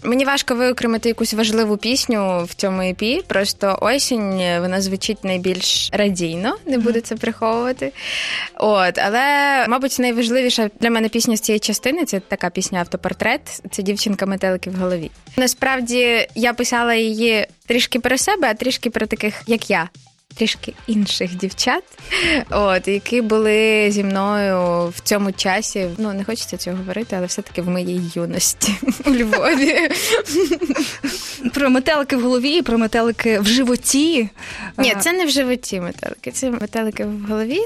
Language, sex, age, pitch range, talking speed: Ukrainian, female, 20-39, 195-250 Hz, 150 wpm